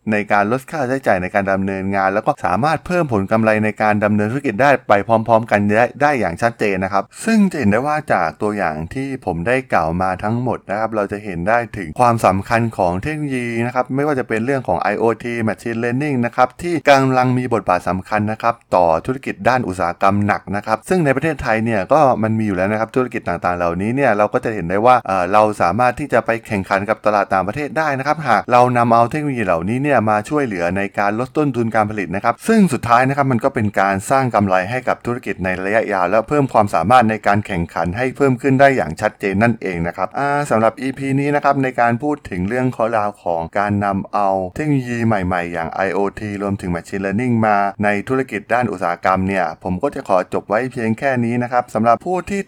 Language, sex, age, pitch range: Thai, male, 20-39, 100-130 Hz